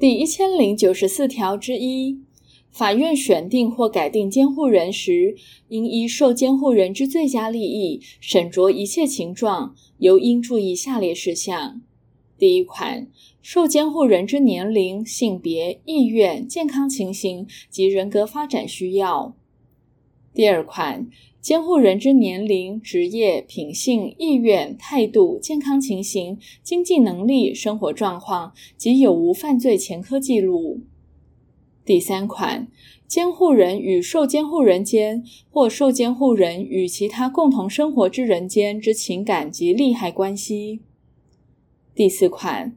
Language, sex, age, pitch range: Chinese, female, 10-29, 195-275 Hz